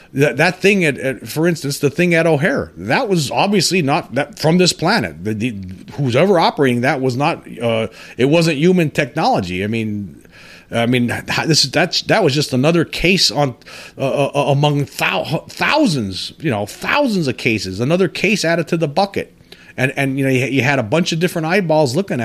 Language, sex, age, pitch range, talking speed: English, male, 40-59, 130-175 Hz, 195 wpm